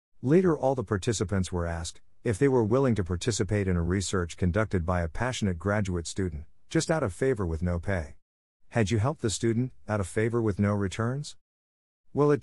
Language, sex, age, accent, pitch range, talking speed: English, male, 50-69, American, 90-115 Hz, 200 wpm